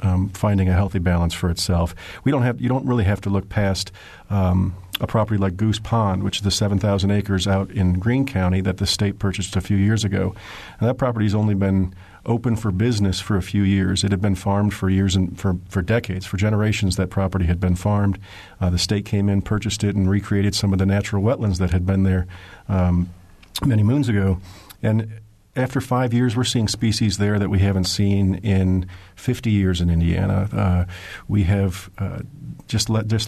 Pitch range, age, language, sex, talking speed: 95-110 Hz, 50-69, English, male, 215 wpm